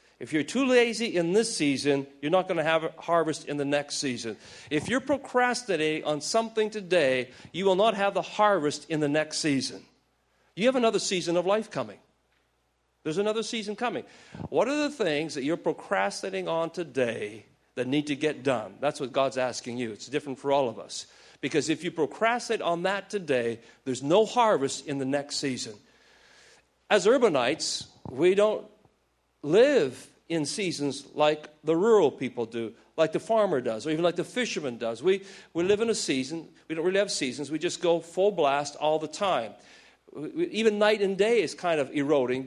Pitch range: 145-210 Hz